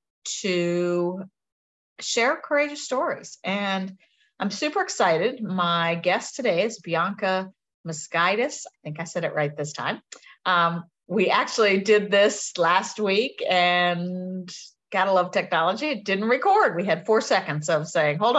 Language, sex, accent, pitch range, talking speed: English, female, American, 175-235 Hz, 140 wpm